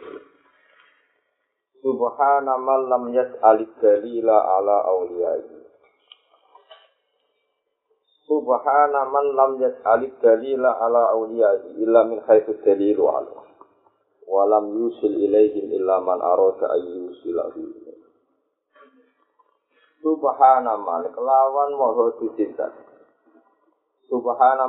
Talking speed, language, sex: 80 wpm, Indonesian, male